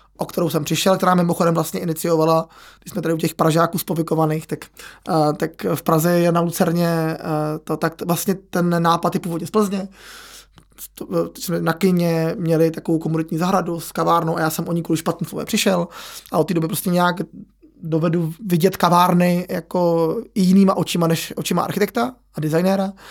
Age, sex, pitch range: 20-39, male, 160-180 Hz